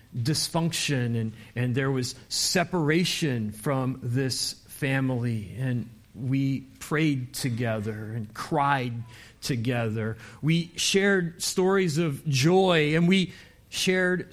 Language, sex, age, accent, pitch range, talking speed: English, male, 40-59, American, 125-175 Hz, 100 wpm